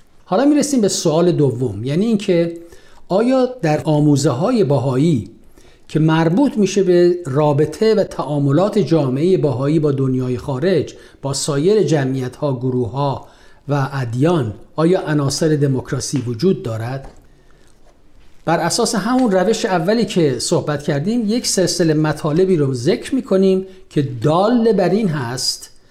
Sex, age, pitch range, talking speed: male, 50-69, 140-185 Hz, 130 wpm